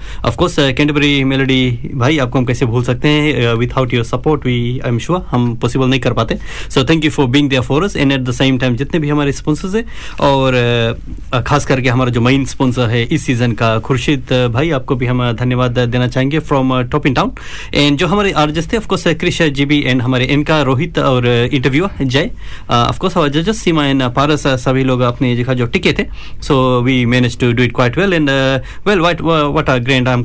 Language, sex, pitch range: Hindi, male, 125-155 Hz